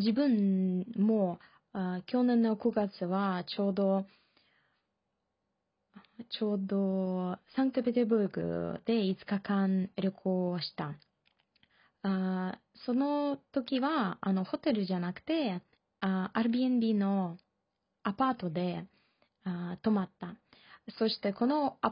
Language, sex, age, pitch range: Japanese, female, 20-39, 190-235 Hz